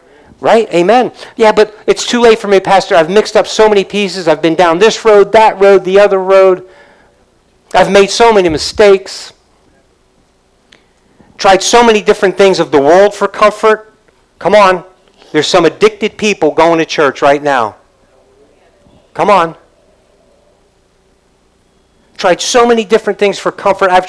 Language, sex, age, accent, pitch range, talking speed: English, male, 50-69, American, 185-215 Hz, 155 wpm